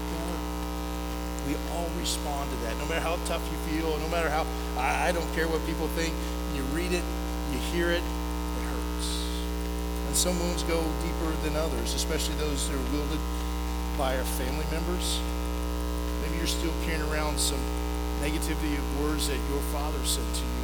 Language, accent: English, American